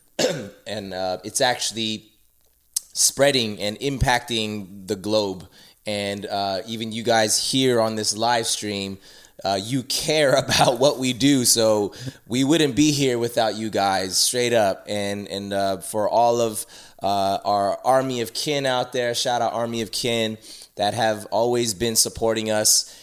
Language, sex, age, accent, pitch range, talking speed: English, male, 20-39, American, 105-125 Hz, 155 wpm